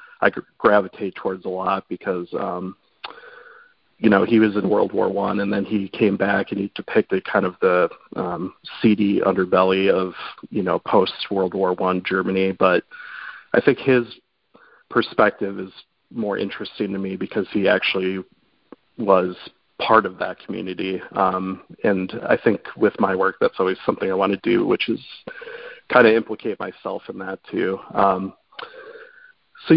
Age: 40-59